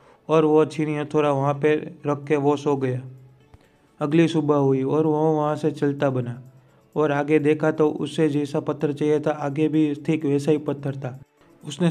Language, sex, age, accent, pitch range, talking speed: Hindi, male, 30-49, native, 140-155 Hz, 185 wpm